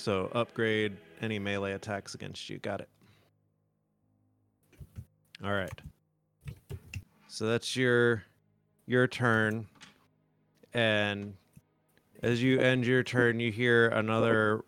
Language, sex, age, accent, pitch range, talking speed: English, male, 30-49, American, 100-115 Hz, 100 wpm